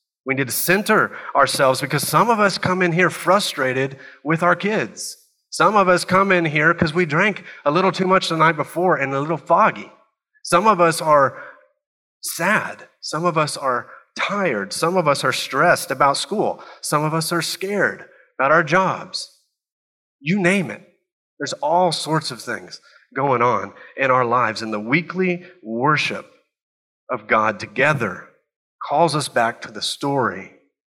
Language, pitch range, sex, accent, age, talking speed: English, 130-180 Hz, male, American, 30-49, 170 wpm